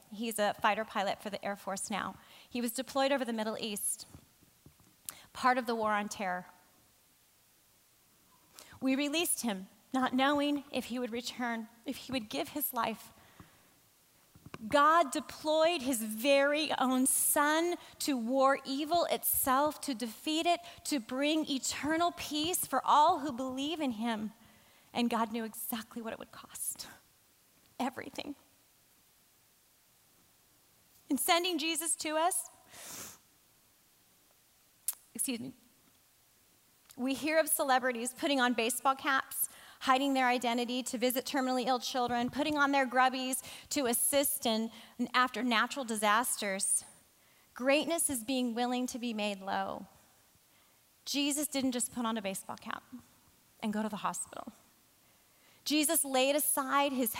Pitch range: 230-285 Hz